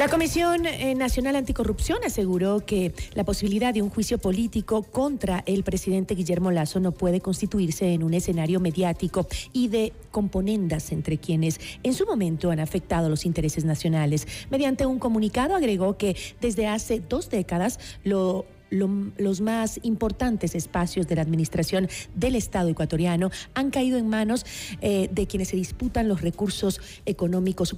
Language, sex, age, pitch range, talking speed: Spanish, female, 40-59, 175-220 Hz, 145 wpm